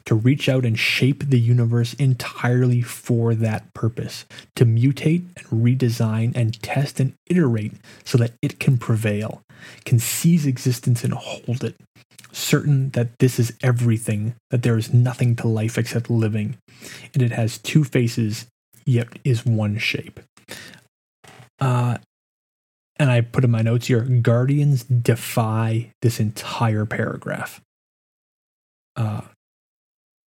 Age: 30-49